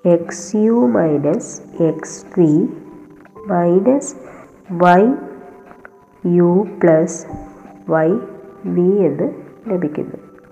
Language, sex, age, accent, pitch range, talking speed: Malayalam, female, 20-39, native, 155-195 Hz, 75 wpm